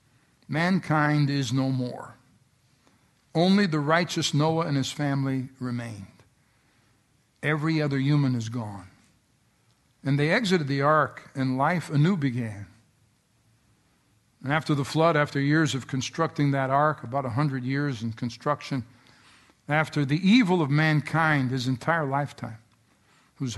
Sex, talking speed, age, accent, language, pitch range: male, 130 wpm, 60-79, American, English, 125-165 Hz